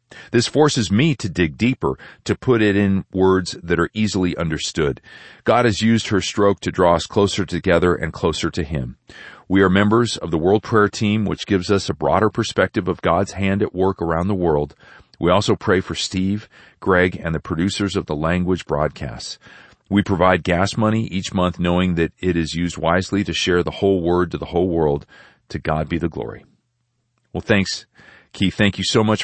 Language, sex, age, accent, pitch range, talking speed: English, male, 40-59, American, 85-110 Hz, 200 wpm